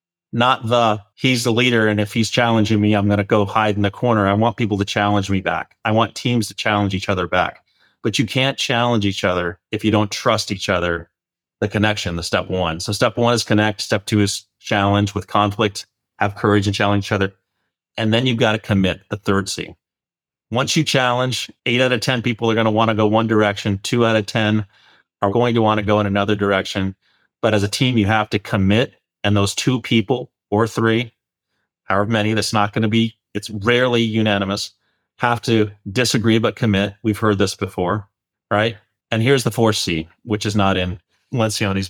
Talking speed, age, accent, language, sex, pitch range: 215 wpm, 30-49, American, English, male, 100-115 Hz